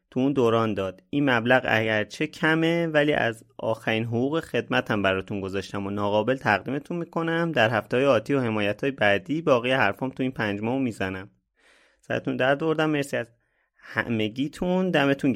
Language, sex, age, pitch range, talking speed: Persian, male, 30-49, 105-135 Hz, 160 wpm